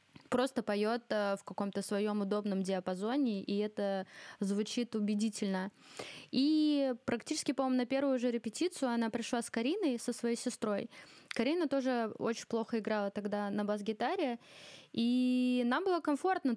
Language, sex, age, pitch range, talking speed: Ukrainian, female, 20-39, 210-245 Hz, 135 wpm